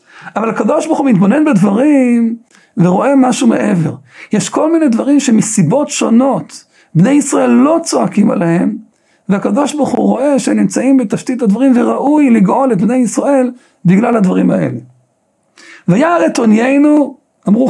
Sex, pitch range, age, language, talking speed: male, 210-280 Hz, 60-79, Hebrew, 135 wpm